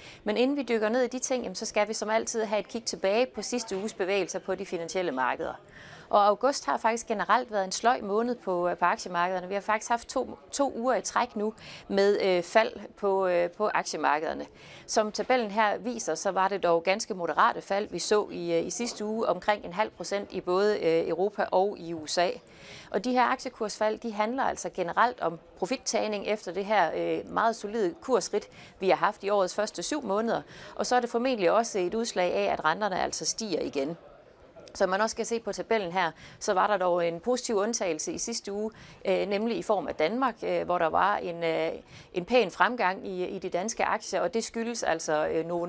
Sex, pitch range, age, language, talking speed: female, 180-225 Hz, 30-49, Danish, 200 wpm